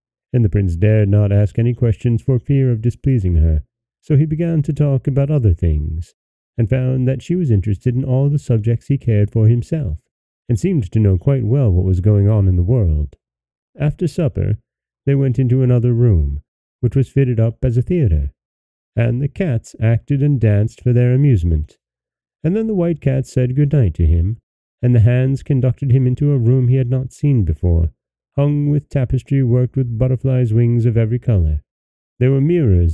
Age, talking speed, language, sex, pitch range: 40-59, 195 wpm, English, male, 95-135 Hz